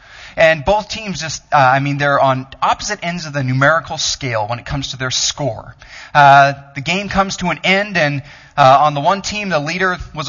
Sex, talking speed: male, 215 wpm